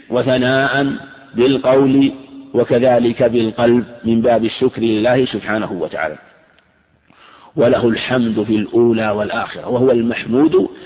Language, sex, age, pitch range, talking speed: Arabic, male, 50-69, 120-145 Hz, 95 wpm